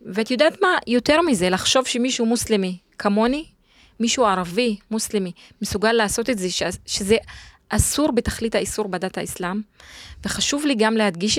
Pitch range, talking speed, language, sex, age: 190-230 Hz, 135 wpm, Hebrew, female, 20-39